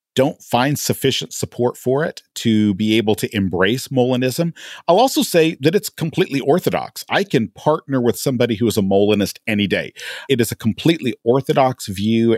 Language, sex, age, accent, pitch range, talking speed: English, male, 40-59, American, 100-135 Hz, 175 wpm